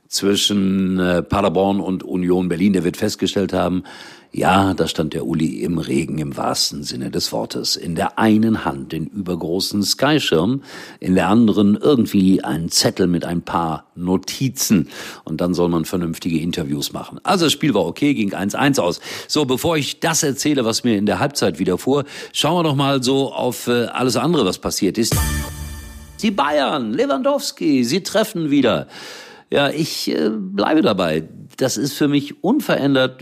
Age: 50-69